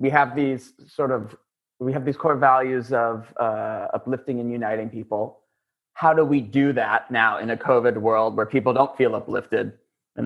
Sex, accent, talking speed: male, American, 185 wpm